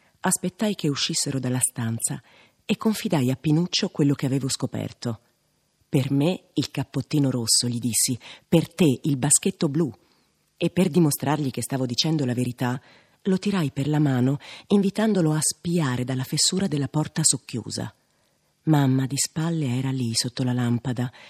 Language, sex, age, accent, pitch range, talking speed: Italian, female, 40-59, native, 125-160 Hz, 150 wpm